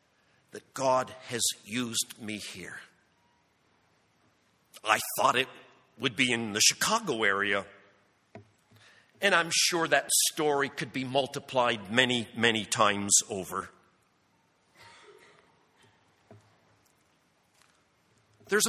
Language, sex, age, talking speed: English, male, 50-69, 90 wpm